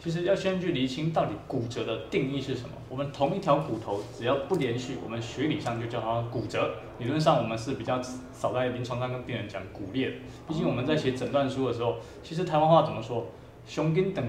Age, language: 20-39, Chinese